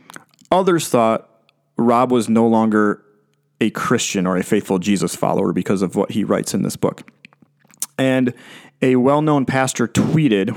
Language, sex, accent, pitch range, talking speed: English, male, American, 110-135 Hz, 150 wpm